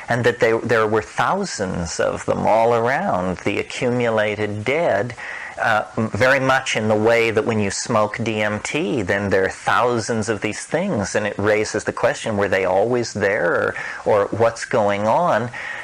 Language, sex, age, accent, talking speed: English, male, 40-59, American, 165 wpm